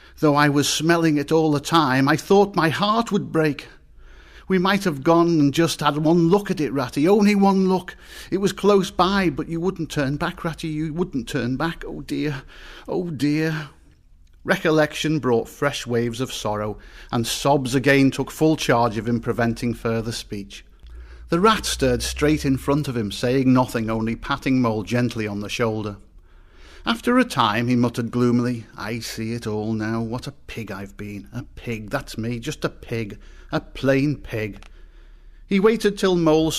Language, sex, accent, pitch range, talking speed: English, male, British, 115-165 Hz, 180 wpm